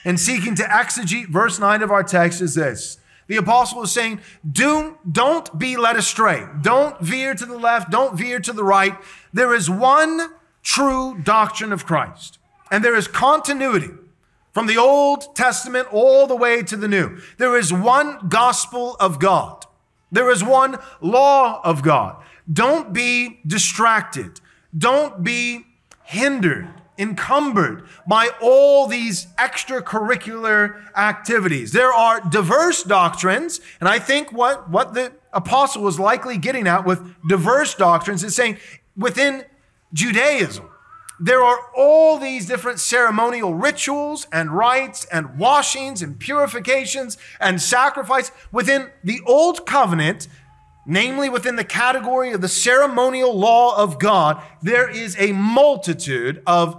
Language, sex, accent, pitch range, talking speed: English, male, American, 190-260 Hz, 135 wpm